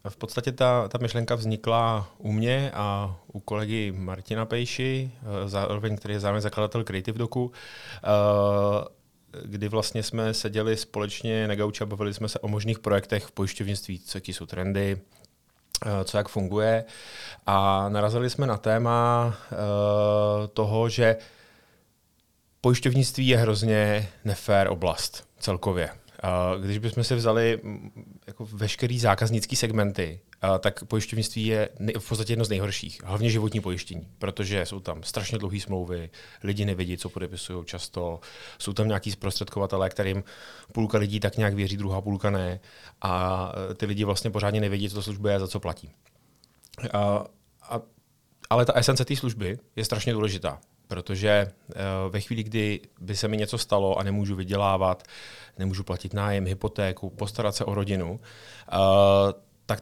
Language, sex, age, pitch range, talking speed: Czech, male, 30-49, 100-110 Hz, 140 wpm